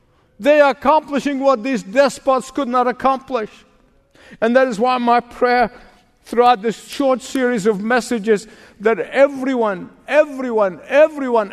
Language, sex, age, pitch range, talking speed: English, male, 50-69, 200-270 Hz, 130 wpm